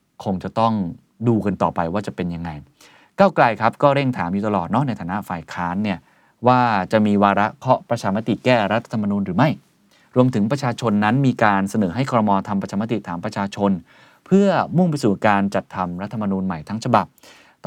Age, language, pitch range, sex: 20-39, Thai, 95-125 Hz, male